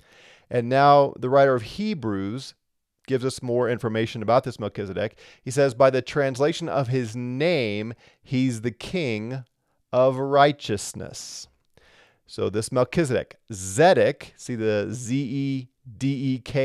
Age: 40-59